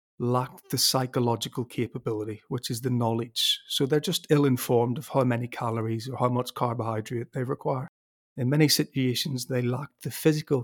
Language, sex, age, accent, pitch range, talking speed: English, male, 40-59, British, 120-135 Hz, 165 wpm